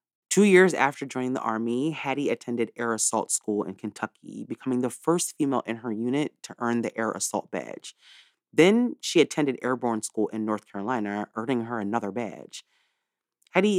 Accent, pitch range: American, 110-155 Hz